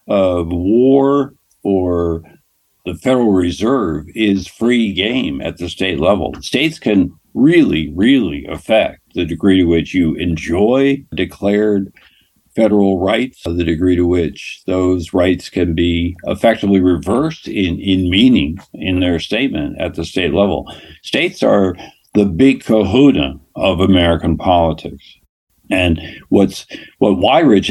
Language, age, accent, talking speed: English, 60-79, American, 125 wpm